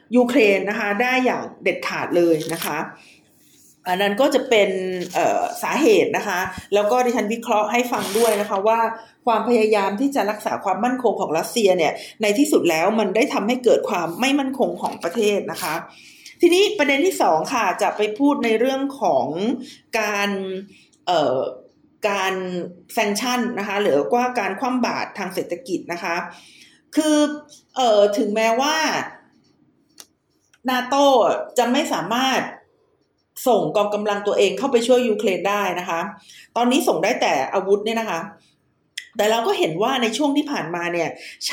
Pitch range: 200-265 Hz